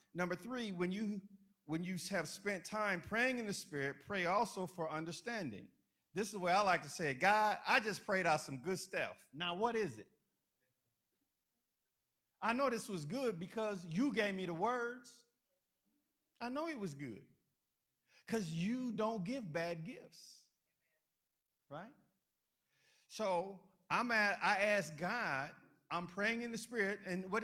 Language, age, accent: English, 50-69, American